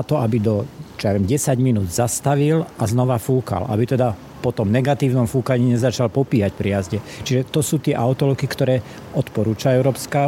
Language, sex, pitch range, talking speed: Slovak, male, 115-140 Hz, 160 wpm